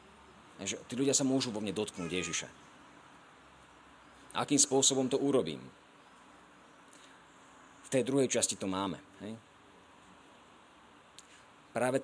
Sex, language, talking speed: male, Slovak, 105 wpm